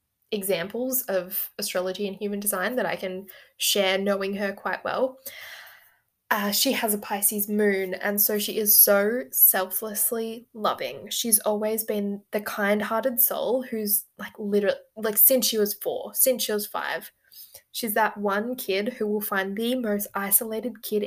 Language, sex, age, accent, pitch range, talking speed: English, female, 10-29, Australian, 195-225 Hz, 160 wpm